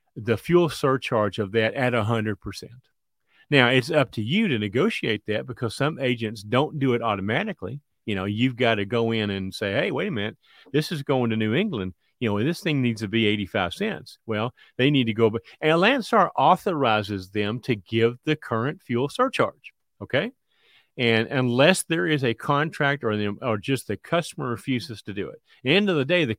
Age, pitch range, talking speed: 40-59, 110-145 Hz, 200 wpm